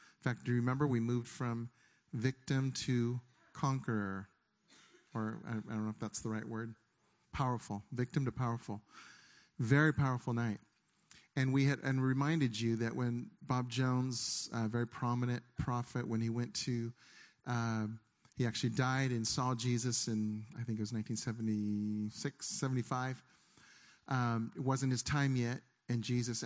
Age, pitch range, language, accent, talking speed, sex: 40-59, 115-130 Hz, English, American, 150 wpm, male